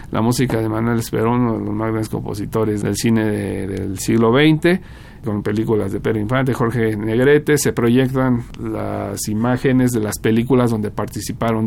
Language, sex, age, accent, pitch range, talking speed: Spanish, male, 50-69, Mexican, 105-125 Hz, 170 wpm